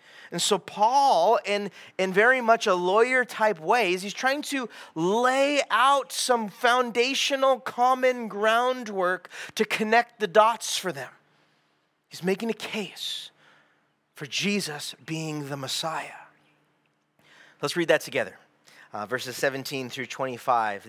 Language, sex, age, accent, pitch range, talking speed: English, male, 30-49, American, 175-235 Hz, 125 wpm